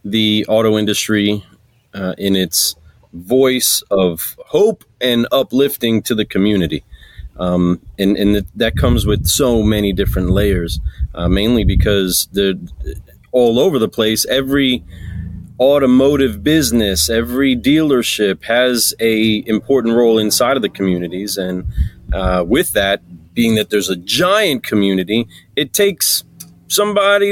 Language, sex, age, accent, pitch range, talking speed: English, male, 30-49, American, 95-125 Hz, 125 wpm